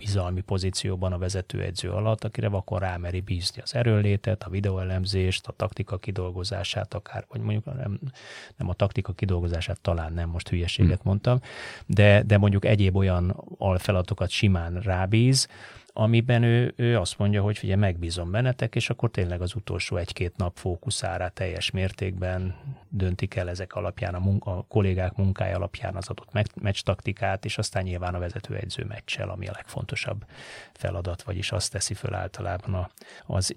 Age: 30-49